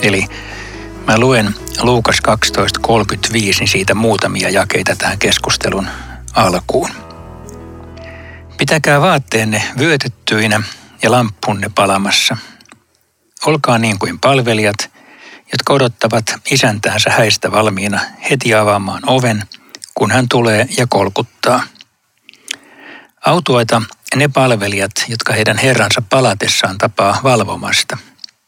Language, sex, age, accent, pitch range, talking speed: Finnish, male, 60-79, native, 105-125 Hz, 90 wpm